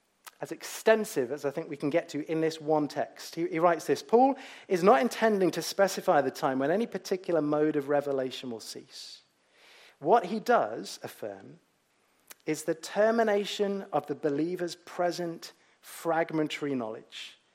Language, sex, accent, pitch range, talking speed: English, male, British, 135-185 Hz, 155 wpm